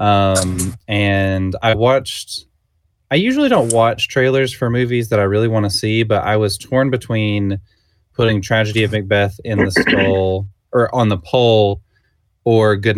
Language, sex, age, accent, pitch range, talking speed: English, male, 20-39, American, 90-110 Hz, 160 wpm